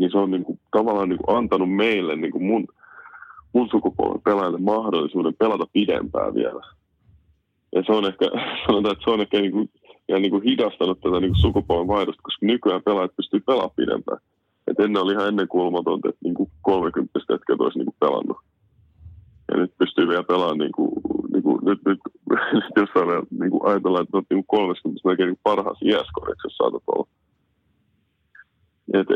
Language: Finnish